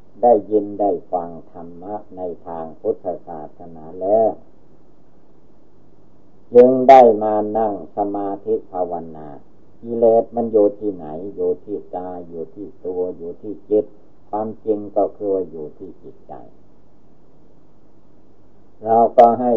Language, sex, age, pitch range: Thai, male, 60-79, 90-110 Hz